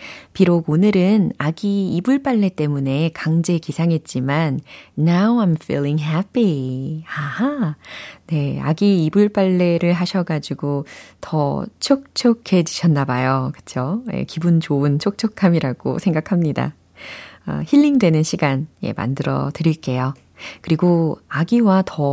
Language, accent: Korean, native